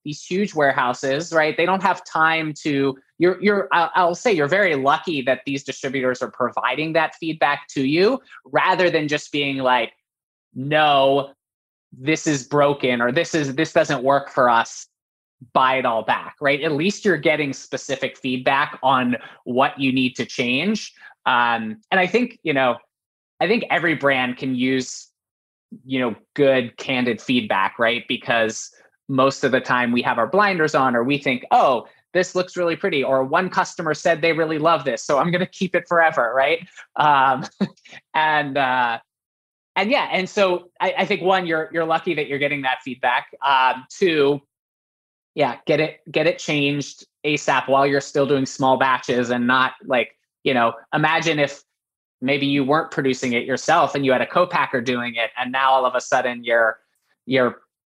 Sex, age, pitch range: male, 20-39, 130-165 Hz